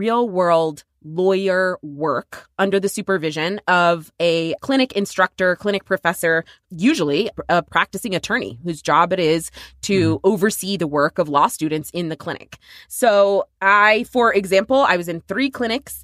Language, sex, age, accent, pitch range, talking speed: English, female, 20-39, American, 170-205 Hz, 145 wpm